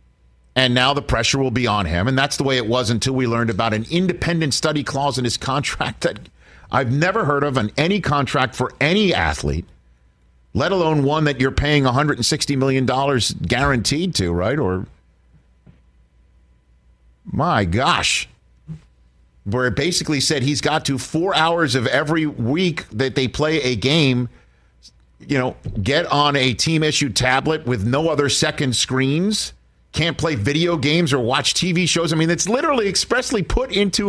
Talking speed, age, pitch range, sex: 165 wpm, 50-69, 110-165 Hz, male